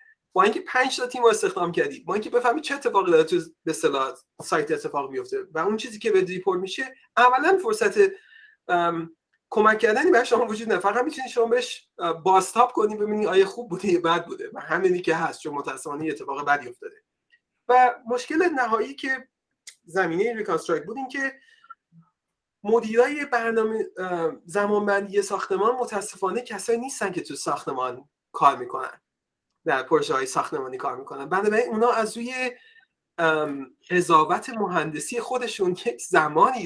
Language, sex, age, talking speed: Persian, male, 30-49, 140 wpm